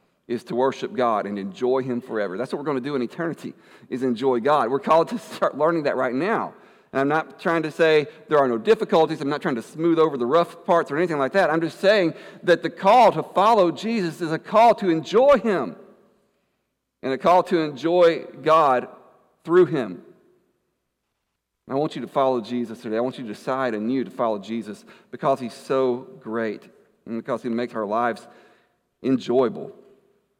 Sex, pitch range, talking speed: male, 125-175 Hz, 195 wpm